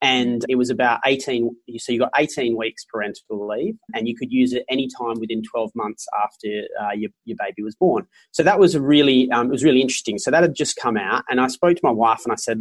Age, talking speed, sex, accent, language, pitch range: 30-49, 250 wpm, male, Australian, English, 115-130 Hz